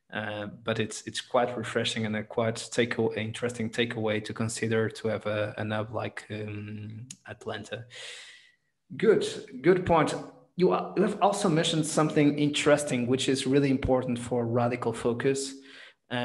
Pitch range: 115-130 Hz